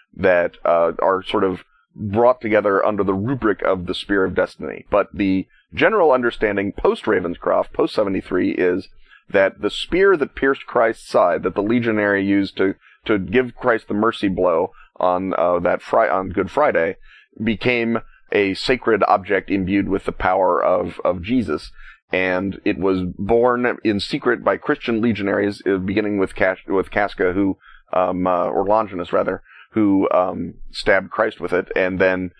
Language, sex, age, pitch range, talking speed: English, male, 30-49, 95-110 Hz, 165 wpm